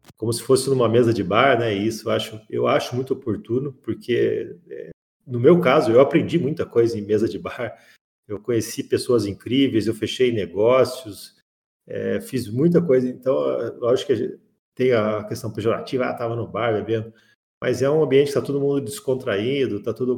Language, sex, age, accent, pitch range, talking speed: Portuguese, male, 40-59, Brazilian, 110-135 Hz, 190 wpm